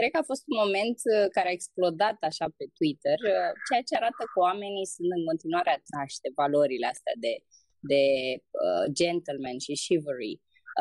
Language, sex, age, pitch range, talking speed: Romanian, female, 20-39, 175-265 Hz, 160 wpm